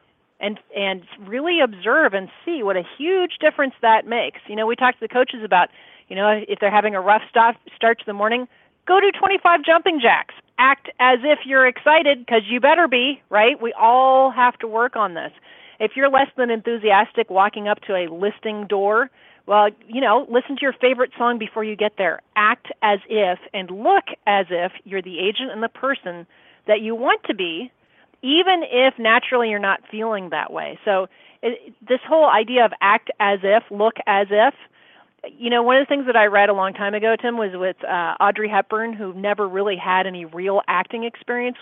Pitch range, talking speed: 195-250 Hz, 200 wpm